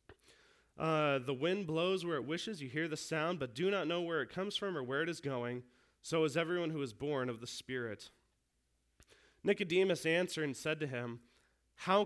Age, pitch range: 30-49, 130-185 Hz